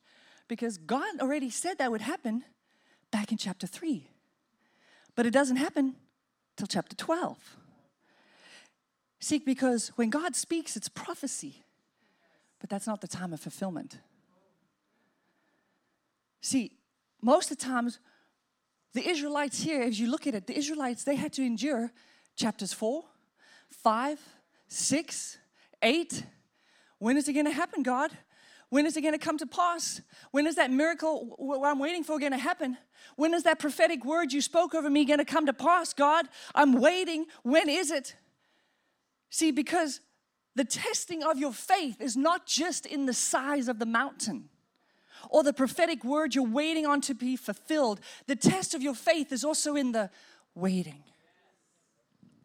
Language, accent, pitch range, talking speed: Russian, American, 250-310 Hz, 160 wpm